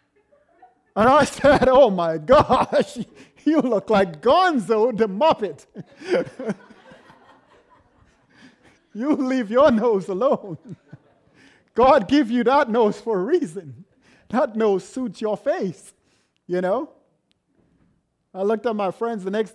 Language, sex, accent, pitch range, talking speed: English, male, American, 180-255 Hz, 120 wpm